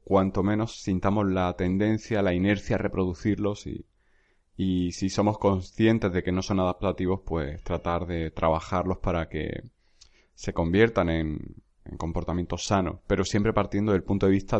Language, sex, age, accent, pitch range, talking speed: Spanish, male, 30-49, Spanish, 90-105 Hz, 155 wpm